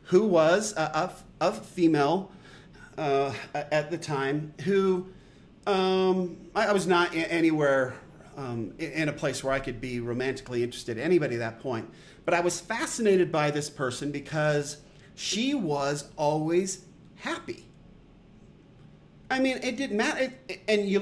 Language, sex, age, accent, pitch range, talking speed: English, male, 40-59, American, 145-190 Hz, 150 wpm